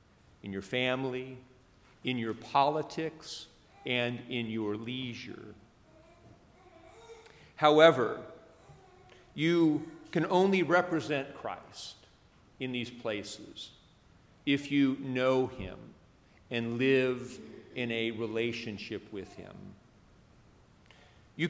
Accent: American